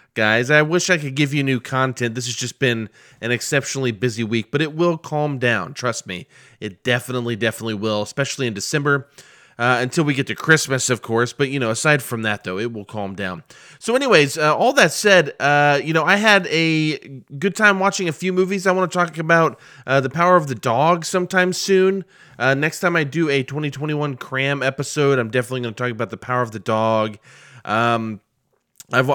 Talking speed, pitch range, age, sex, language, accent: 215 wpm, 115-150 Hz, 20-39, male, English, American